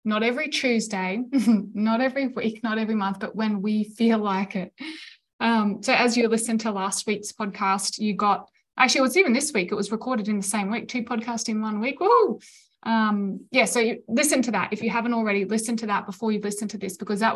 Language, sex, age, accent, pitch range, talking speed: English, female, 20-39, Australian, 205-240 Hz, 230 wpm